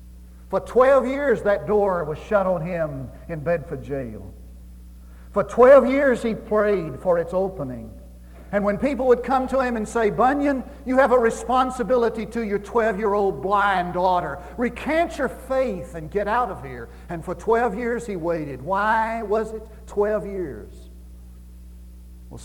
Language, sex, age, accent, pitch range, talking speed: English, male, 60-79, American, 140-210 Hz, 160 wpm